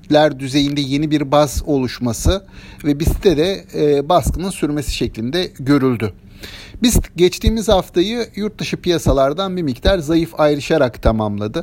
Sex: male